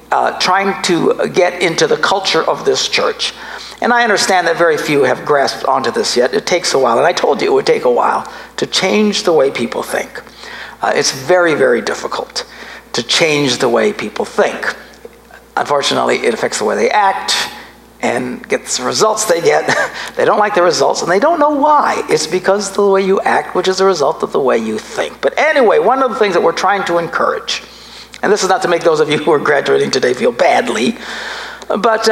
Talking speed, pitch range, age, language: 220 wpm, 190-275 Hz, 60-79, English